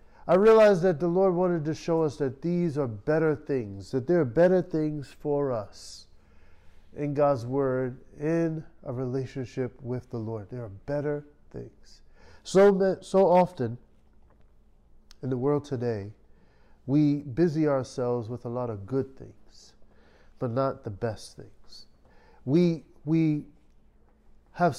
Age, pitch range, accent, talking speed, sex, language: 50-69, 120-165 Hz, American, 140 wpm, male, English